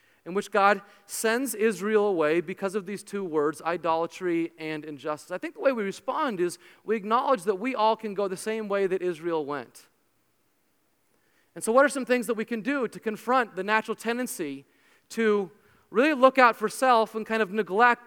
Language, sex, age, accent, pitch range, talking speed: English, male, 30-49, American, 195-240 Hz, 195 wpm